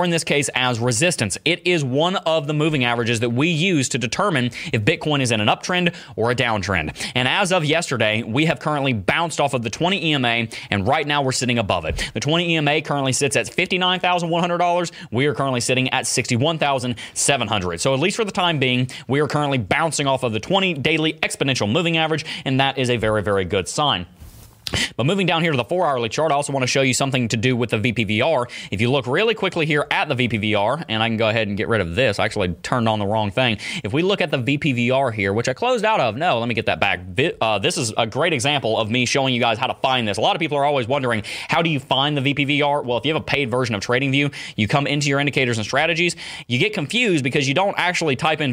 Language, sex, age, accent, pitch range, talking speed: English, male, 30-49, American, 115-155 Hz, 250 wpm